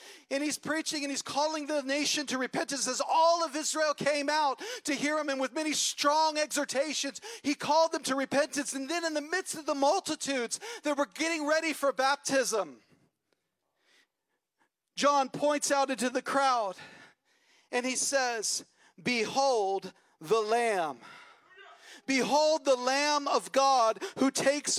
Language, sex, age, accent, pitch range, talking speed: English, male, 40-59, American, 275-330 Hz, 150 wpm